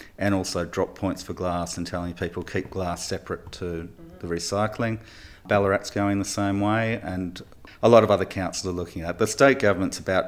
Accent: Australian